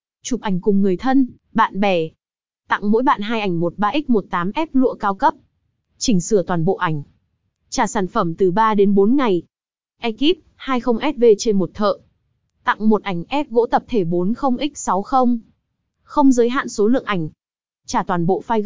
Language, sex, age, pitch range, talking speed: Vietnamese, female, 20-39, 195-245 Hz, 165 wpm